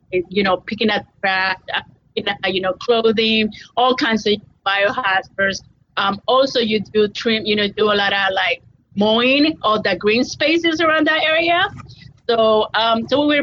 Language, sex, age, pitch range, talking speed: English, female, 30-49, 180-220 Hz, 155 wpm